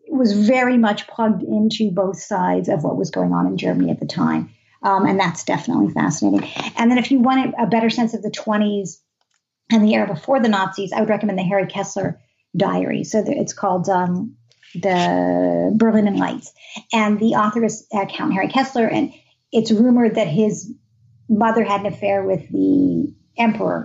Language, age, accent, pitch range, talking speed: English, 50-69, American, 195-245 Hz, 185 wpm